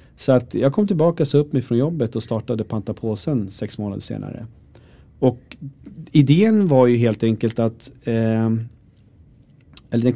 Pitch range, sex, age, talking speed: 110-140 Hz, male, 40-59, 155 wpm